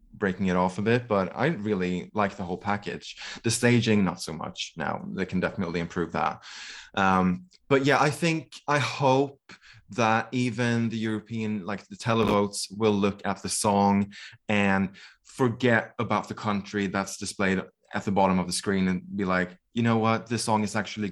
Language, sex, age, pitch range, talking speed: English, male, 20-39, 95-120 Hz, 185 wpm